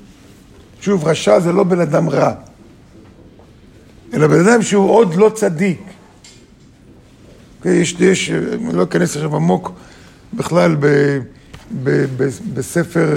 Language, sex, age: Hebrew, male, 50-69